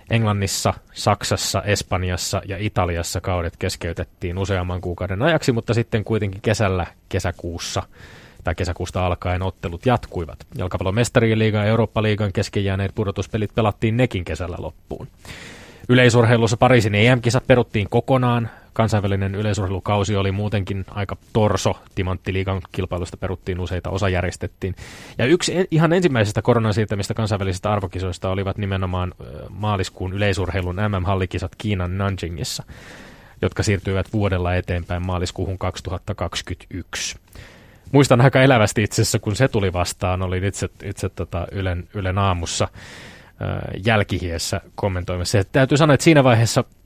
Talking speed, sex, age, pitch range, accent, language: 115 wpm, male, 20-39, 90-110 Hz, native, Finnish